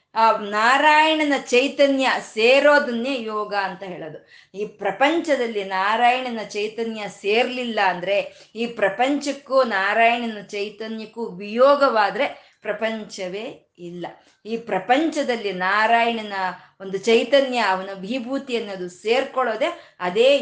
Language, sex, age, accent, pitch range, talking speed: Kannada, female, 20-39, native, 195-245 Hz, 85 wpm